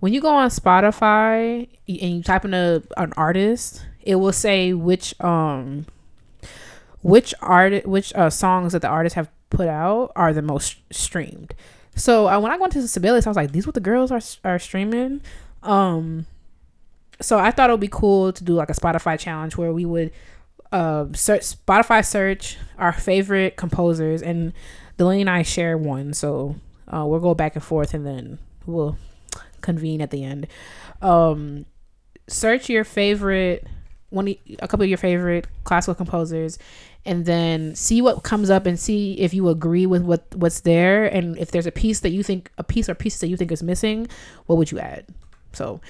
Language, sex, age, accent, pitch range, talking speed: English, female, 20-39, American, 165-210 Hz, 190 wpm